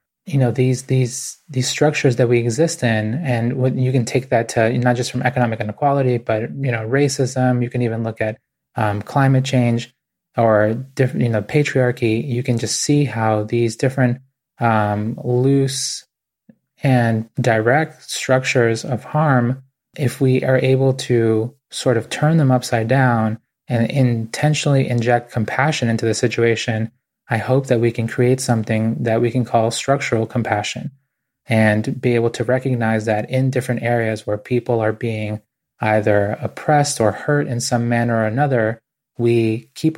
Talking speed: 160 wpm